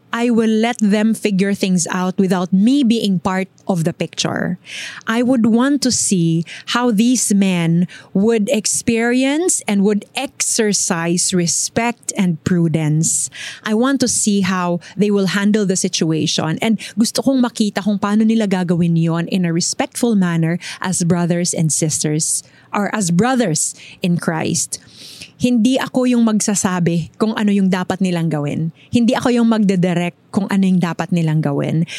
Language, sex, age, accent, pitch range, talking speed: English, female, 20-39, Filipino, 175-220 Hz, 155 wpm